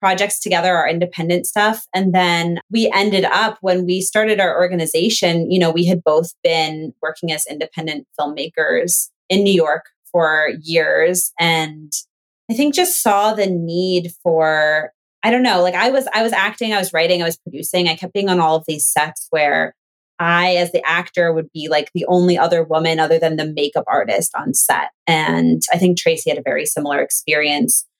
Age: 20-39